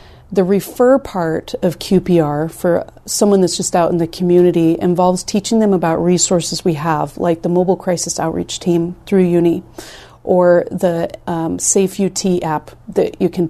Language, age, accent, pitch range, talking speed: English, 30-49, American, 165-190 Hz, 160 wpm